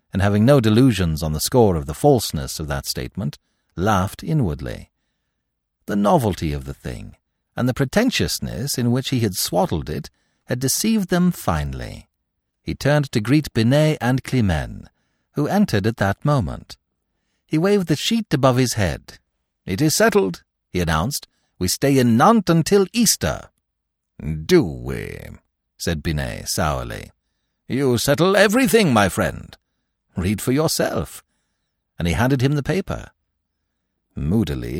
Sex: male